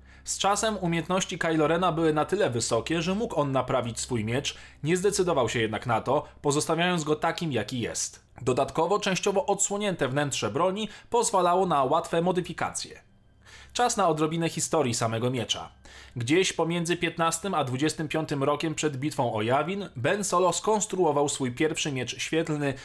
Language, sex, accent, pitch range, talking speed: Polish, male, native, 125-165 Hz, 150 wpm